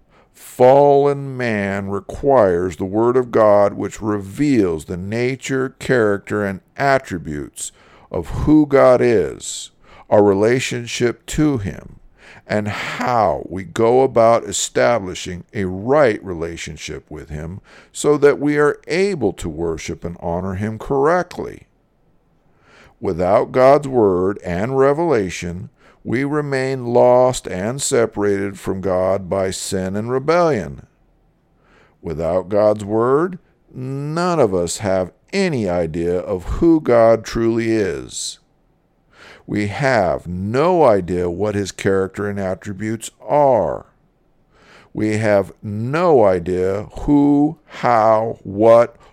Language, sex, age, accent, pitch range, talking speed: English, male, 50-69, American, 95-130 Hz, 110 wpm